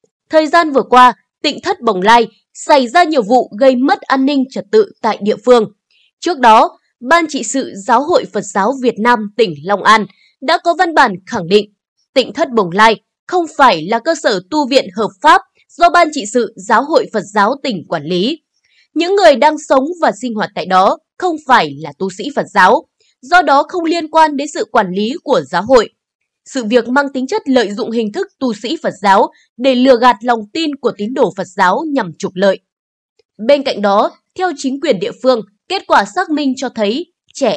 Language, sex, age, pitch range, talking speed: Vietnamese, female, 20-39, 220-310 Hz, 215 wpm